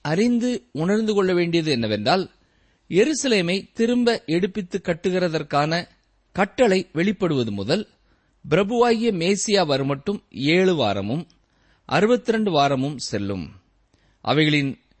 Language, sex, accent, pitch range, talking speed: Tamil, male, native, 135-205 Hz, 85 wpm